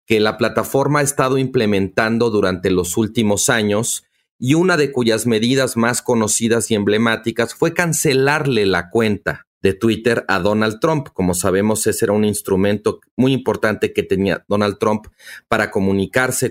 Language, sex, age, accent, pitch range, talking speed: Spanish, male, 40-59, Mexican, 105-130 Hz, 155 wpm